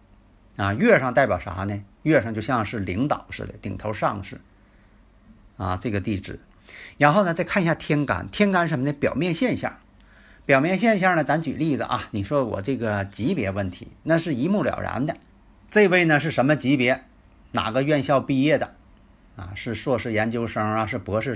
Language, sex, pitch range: Chinese, male, 105-150 Hz